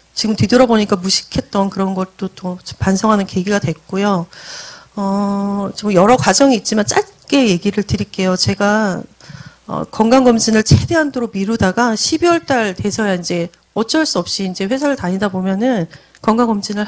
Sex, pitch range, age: female, 190-250 Hz, 40-59